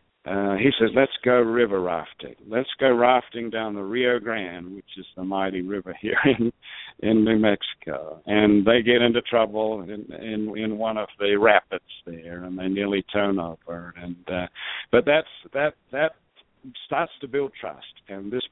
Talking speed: 175 wpm